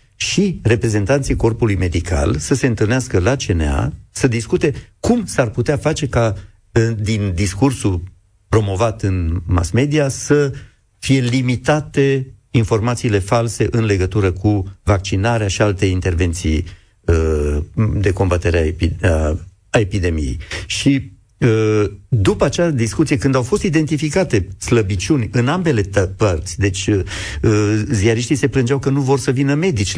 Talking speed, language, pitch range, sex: 120 wpm, Romanian, 95-125 Hz, male